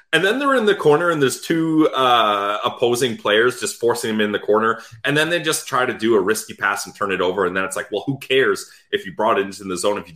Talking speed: 285 wpm